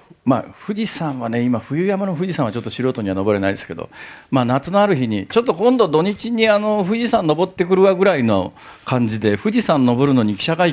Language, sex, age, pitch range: Japanese, male, 40-59, 115-185 Hz